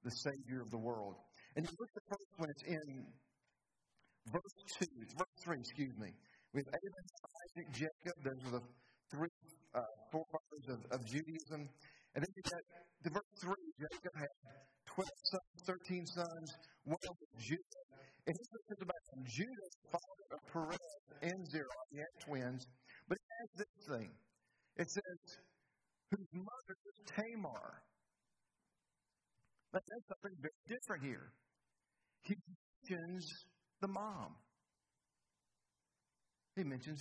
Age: 50-69